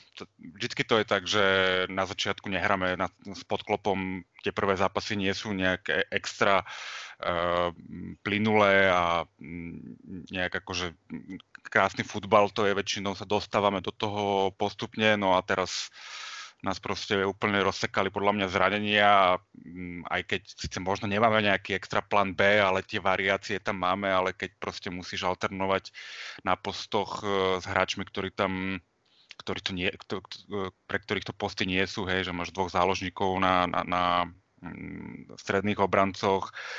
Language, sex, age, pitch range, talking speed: Slovak, male, 30-49, 95-100 Hz, 140 wpm